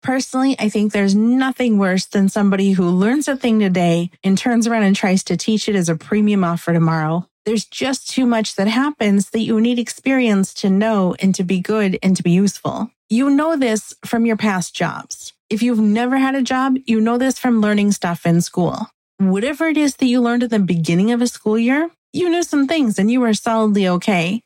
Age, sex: 30-49, female